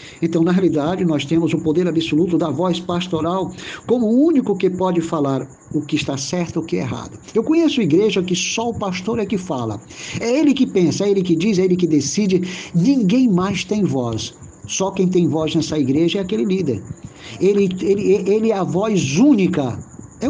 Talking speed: 205 wpm